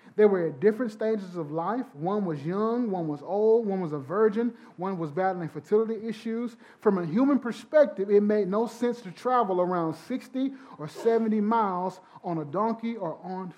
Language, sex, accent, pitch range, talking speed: English, male, American, 155-215 Hz, 185 wpm